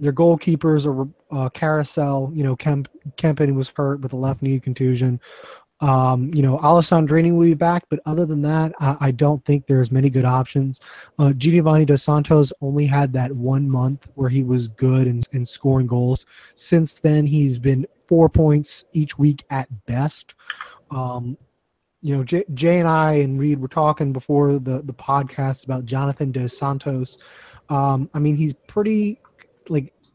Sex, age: male, 20-39